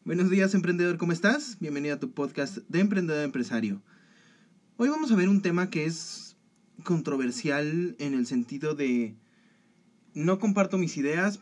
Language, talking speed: Spanish, 150 wpm